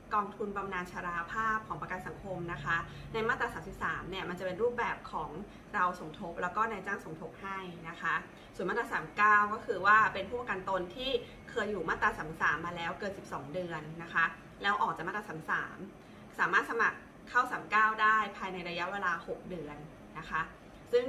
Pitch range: 180-215 Hz